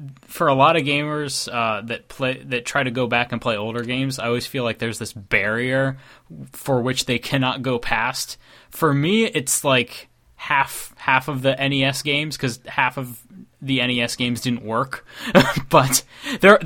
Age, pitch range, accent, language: 20-39, 115-135 Hz, American, English